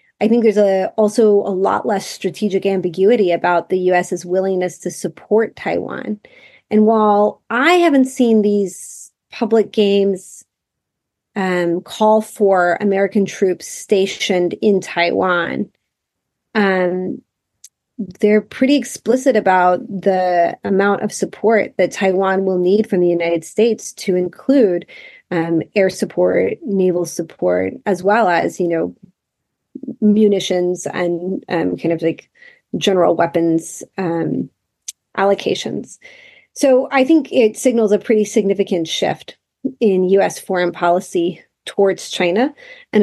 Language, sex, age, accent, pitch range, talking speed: English, female, 30-49, American, 180-220 Hz, 125 wpm